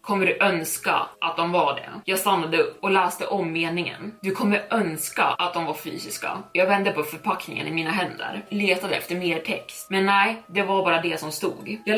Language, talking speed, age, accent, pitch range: Swedish, 205 wpm, 20-39, native, 175-200 Hz